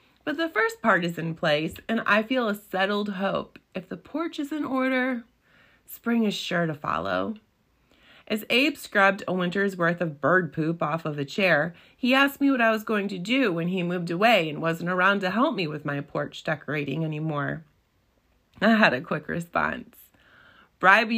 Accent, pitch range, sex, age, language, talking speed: American, 165-230 Hz, female, 30-49, English, 190 wpm